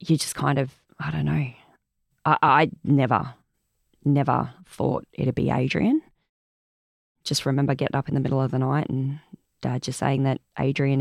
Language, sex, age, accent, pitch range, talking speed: English, female, 20-39, Australian, 130-145 Hz, 170 wpm